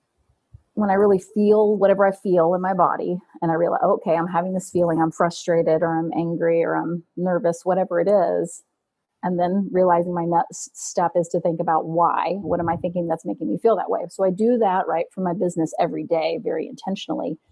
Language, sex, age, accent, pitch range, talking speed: English, female, 30-49, American, 170-205 Hz, 210 wpm